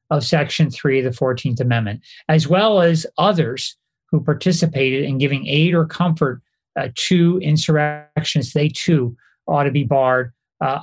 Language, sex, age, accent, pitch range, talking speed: English, male, 40-59, American, 130-160 Hz, 155 wpm